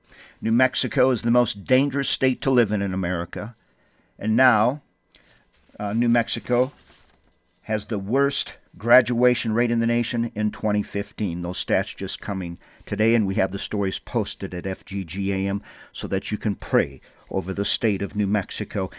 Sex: male